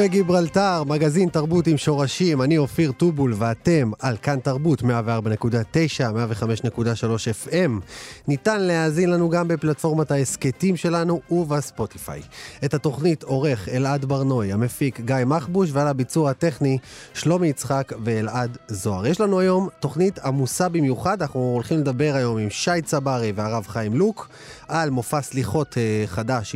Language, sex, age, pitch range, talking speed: Hebrew, male, 30-49, 120-170 Hz, 135 wpm